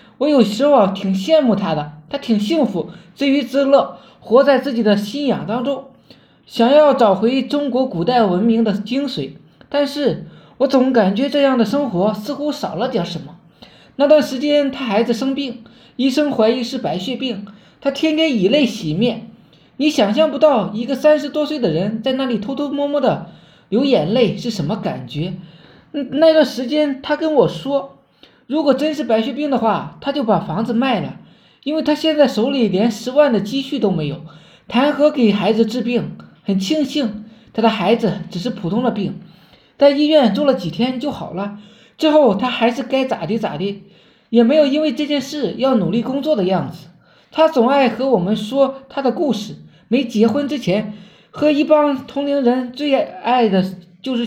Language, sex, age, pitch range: Chinese, male, 20-39, 210-280 Hz